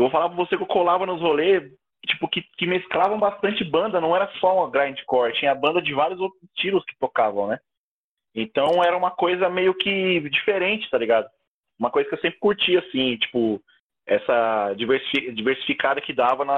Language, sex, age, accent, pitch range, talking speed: Portuguese, male, 20-39, Brazilian, 130-195 Hz, 190 wpm